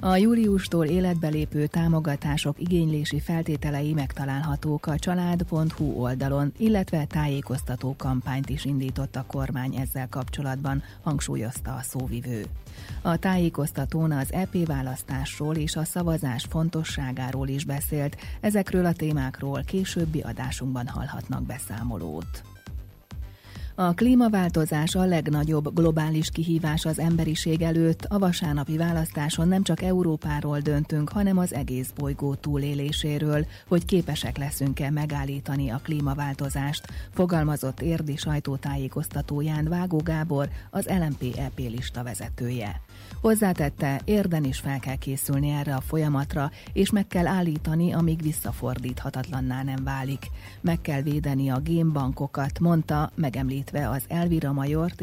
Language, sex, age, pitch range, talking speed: Hungarian, female, 30-49, 135-165 Hz, 115 wpm